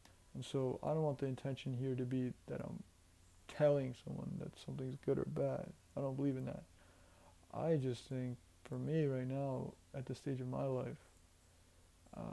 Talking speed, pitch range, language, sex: 180 wpm, 80-135 Hz, English, male